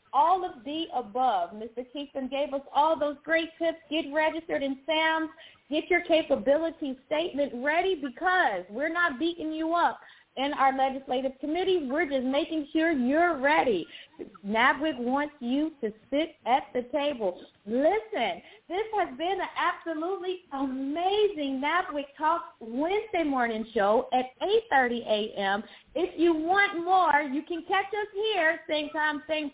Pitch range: 270-355 Hz